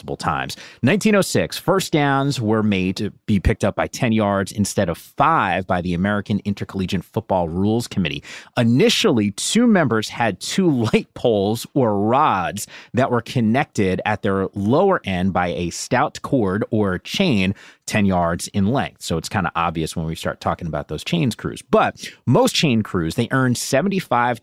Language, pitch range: English, 95-140 Hz